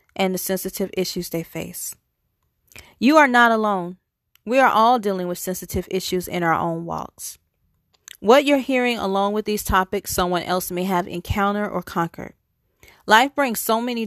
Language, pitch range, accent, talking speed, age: English, 180-225 Hz, American, 165 wpm, 40-59